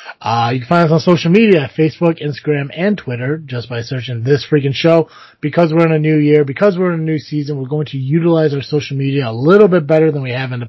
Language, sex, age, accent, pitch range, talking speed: English, male, 30-49, American, 120-160 Hz, 260 wpm